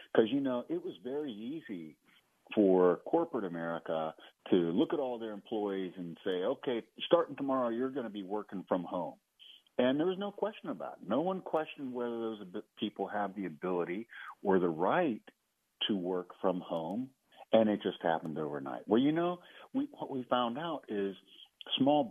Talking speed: 175 wpm